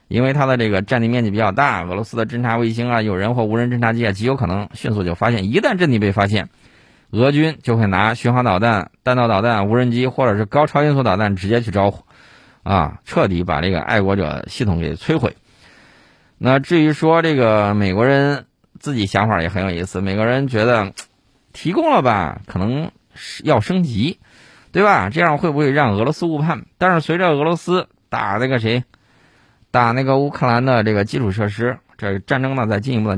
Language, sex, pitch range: Chinese, male, 100-130 Hz